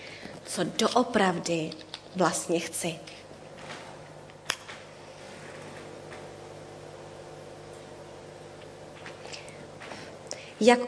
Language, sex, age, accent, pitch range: Czech, female, 20-39, native, 165-220 Hz